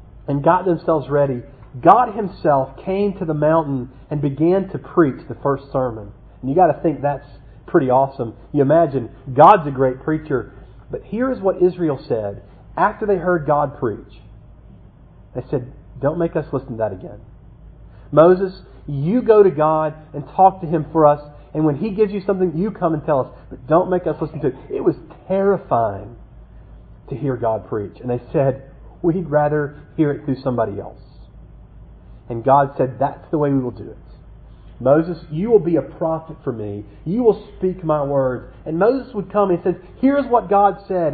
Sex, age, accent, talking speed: male, 40-59, American, 190 wpm